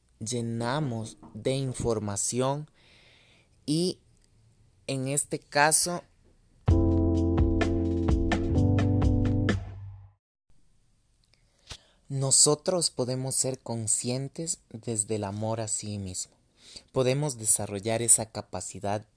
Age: 30-49